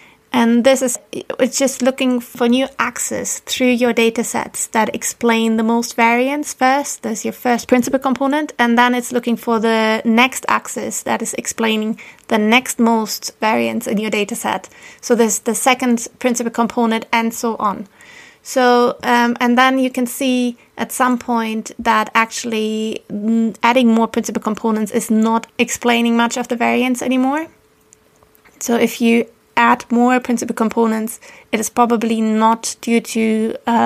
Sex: female